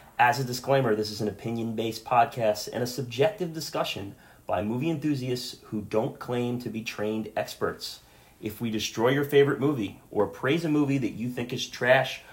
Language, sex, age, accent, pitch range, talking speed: English, male, 30-49, American, 110-140 Hz, 180 wpm